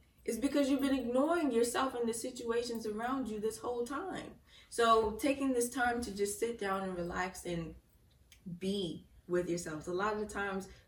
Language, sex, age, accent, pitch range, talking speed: English, female, 20-39, American, 170-215 Hz, 180 wpm